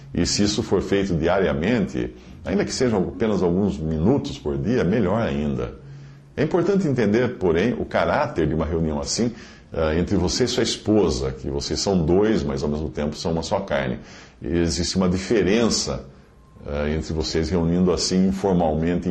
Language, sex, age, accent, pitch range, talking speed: English, male, 50-69, Brazilian, 80-115 Hz, 165 wpm